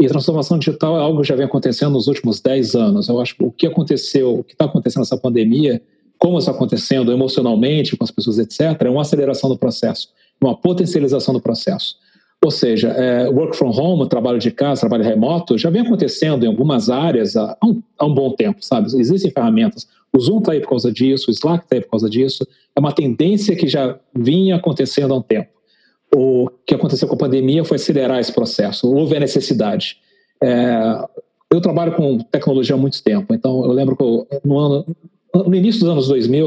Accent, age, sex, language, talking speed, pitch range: Brazilian, 40-59, male, Portuguese, 195 wpm, 130-175 Hz